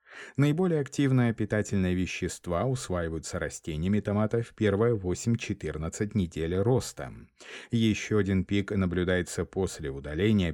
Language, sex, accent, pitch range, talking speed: Russian, male, native, 85-115 Hz, 100 wpm